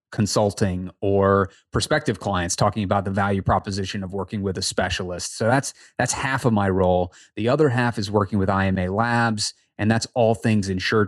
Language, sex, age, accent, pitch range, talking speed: English, male, 30-49, American, 100-115 Hz, 185 wpm